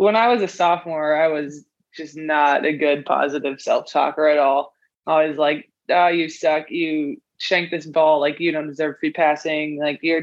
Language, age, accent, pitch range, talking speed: English, 20-39, American, 155-180 Hz, 195 wpm